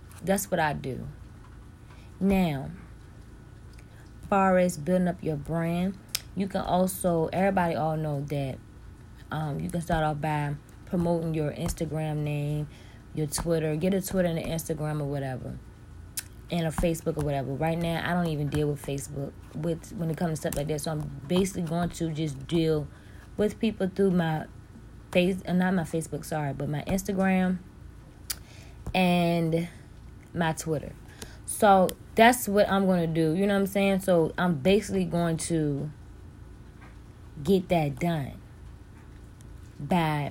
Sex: female